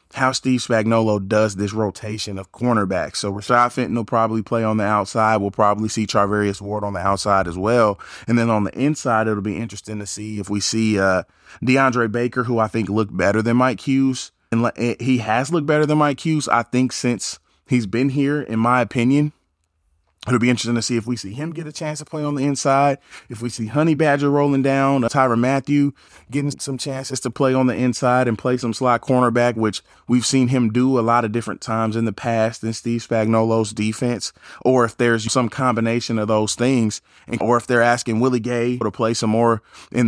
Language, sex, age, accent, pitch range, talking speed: English, male, 20-39, American, 110-130 Hz, 215 wpm